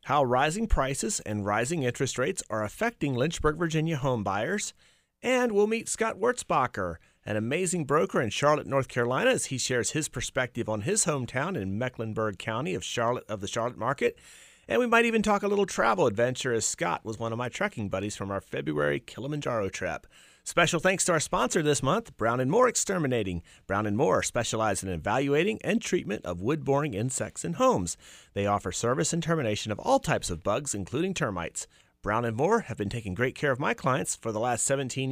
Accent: American